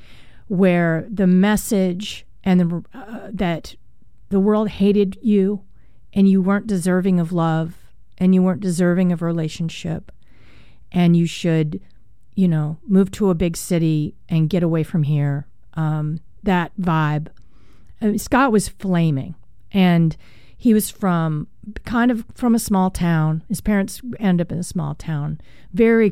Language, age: English, 40-59